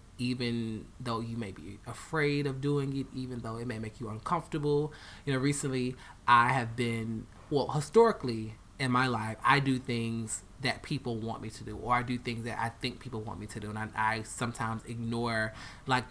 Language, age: English, 20-39